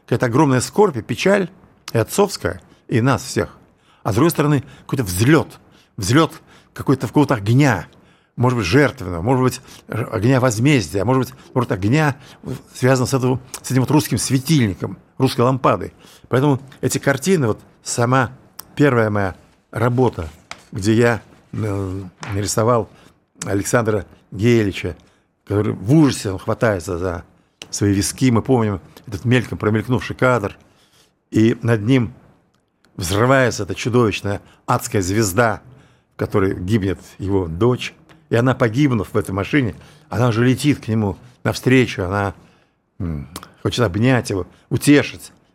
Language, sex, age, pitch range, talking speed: Russian, male, 60-79, 100-130 Hz, 125 wpm